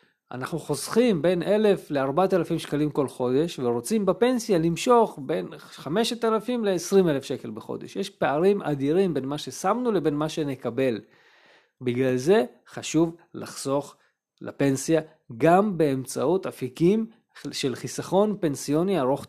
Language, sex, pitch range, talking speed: Hebrew, male, 140-195 Hz, 115 wpm